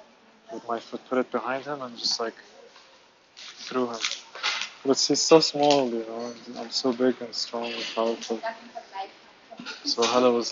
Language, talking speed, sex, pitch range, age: English, 165 wpm, male, 115-155 Hz, 20-39